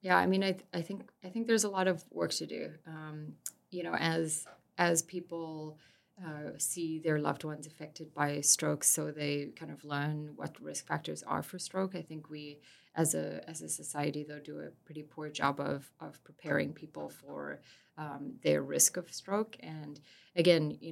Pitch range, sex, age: 145-160 Hz, female, 30-49